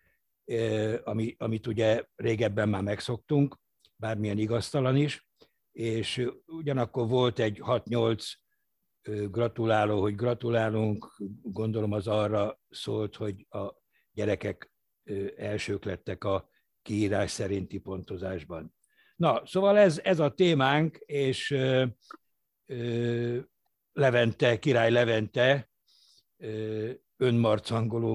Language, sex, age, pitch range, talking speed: Hungarian, male, 60-79, 105-120 Hz, 85 wpm